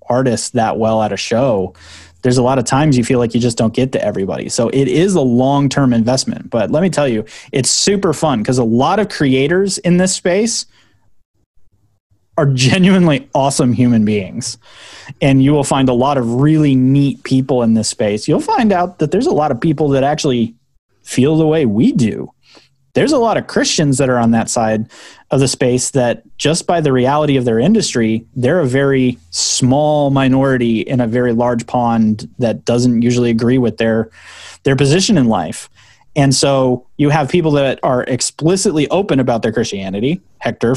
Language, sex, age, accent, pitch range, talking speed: English, male, 30-49, American, 115-145 Hz, 190 wpm